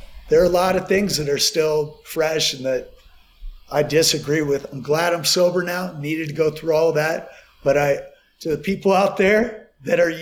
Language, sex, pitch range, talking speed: English, male, 140-185 Hz, 205 wpm